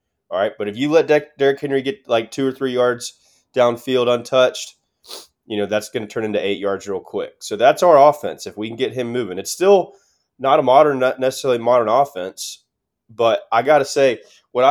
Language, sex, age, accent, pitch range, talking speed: English, male, 20-39, American, 105-135 Hz, 210 wpm